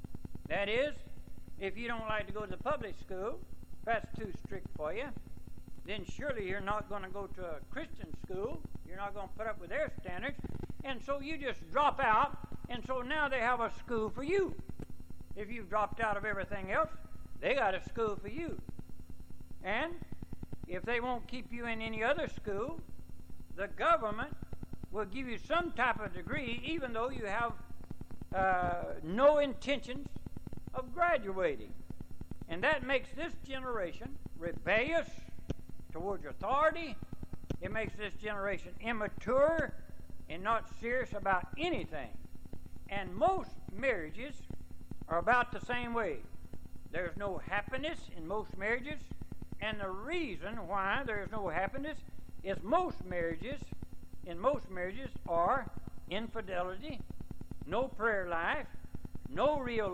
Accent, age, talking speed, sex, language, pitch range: American, 60-79, 145 wpm, male, English, 195-265 Hz